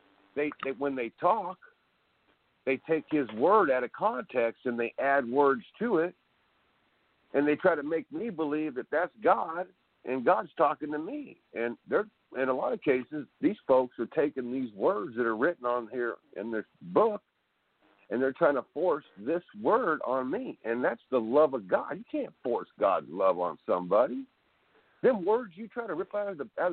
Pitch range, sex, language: 120-185 Hz, male, English